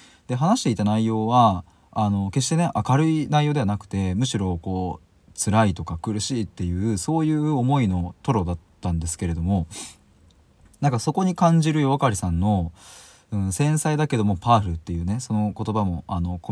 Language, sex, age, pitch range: Japanese, male, 20-39, 90-130 Hz